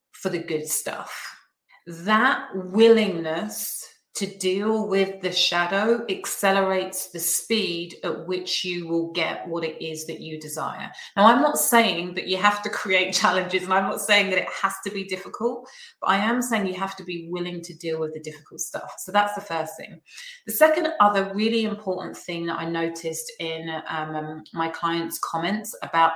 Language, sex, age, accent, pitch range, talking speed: English, female, 30-49, British, 170-215 Hz, 180 wpm